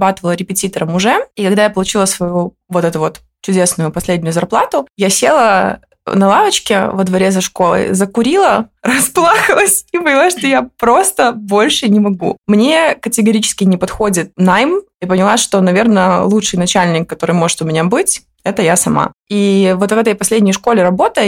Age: 20-39